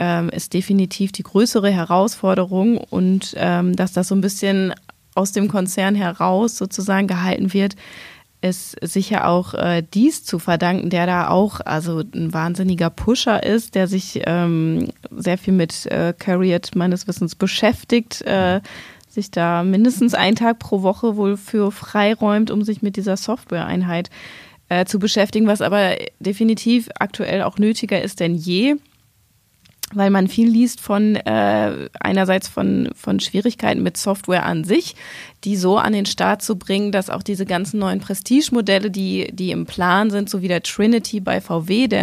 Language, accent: German, German